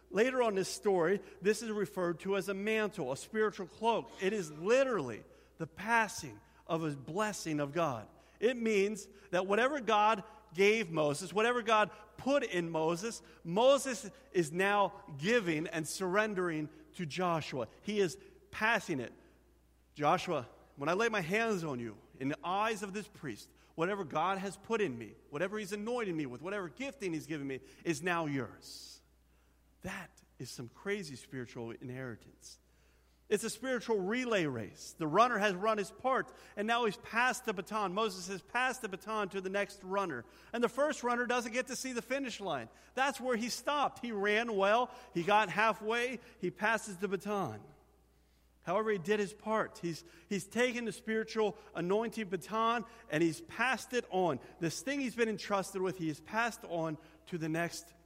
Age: 50-69